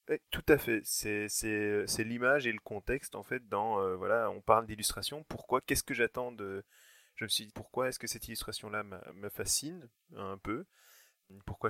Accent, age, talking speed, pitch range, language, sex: French, 20-39, 200 wpm, 100-115 Hz, French, male